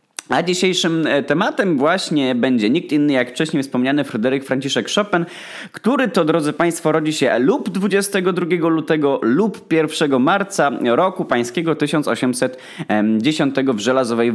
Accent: native